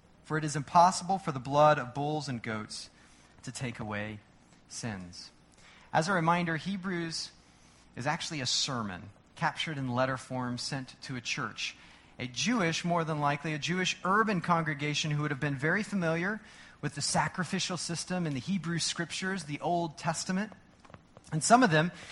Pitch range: 125-170 Hz